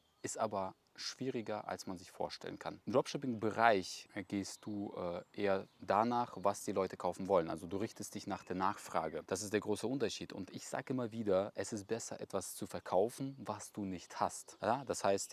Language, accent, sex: German, German, male